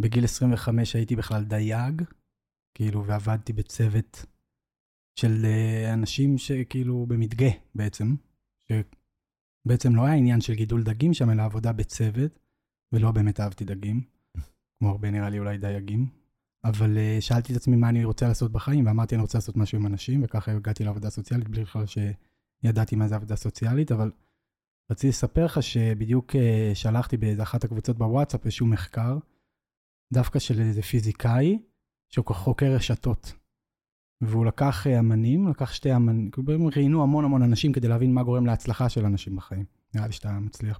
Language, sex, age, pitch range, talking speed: Hebrew, male, 20-39, 105-125 Hz, 155 wpm